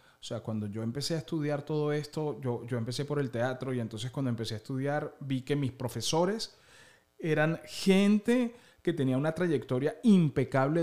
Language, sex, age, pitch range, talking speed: Spanish, male, 30-49, 120-155 Hz, 175 wpm